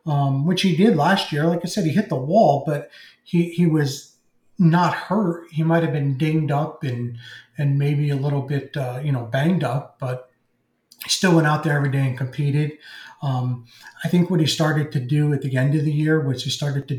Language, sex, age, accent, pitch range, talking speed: English, male, 30-49, American, 130-165 Hz, 225 wpm